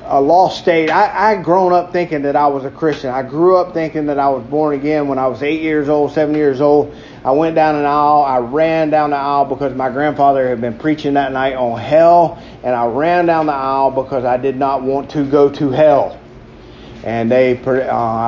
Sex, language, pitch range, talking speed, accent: male, English, 135-160 Hz, 225 wpm, American